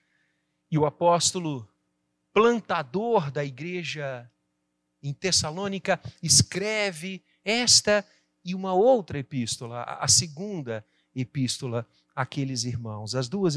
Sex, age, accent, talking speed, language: male, 50-69, Brazilian, 95 wpm, Portuguese